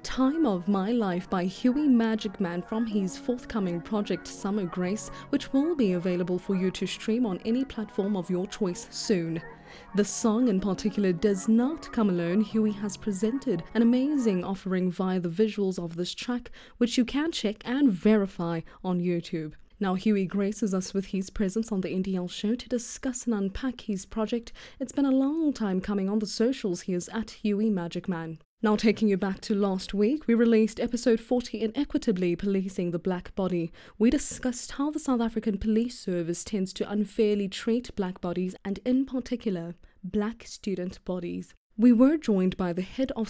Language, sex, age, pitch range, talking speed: English, female, 20-39, 185-235 Hz, 185 wpm